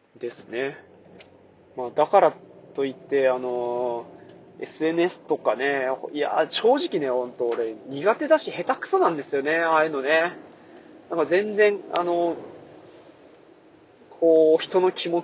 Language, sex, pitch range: Japanese, male, 135-200 Hz